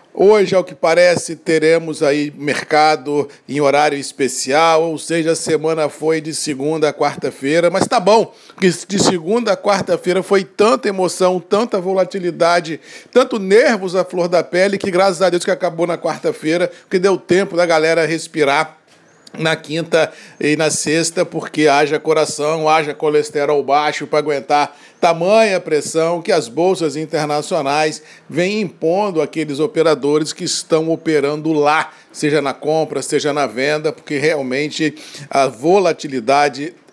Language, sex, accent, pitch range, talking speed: Portuguese, male, Brazilian, 145-175 Hz, 145 wpm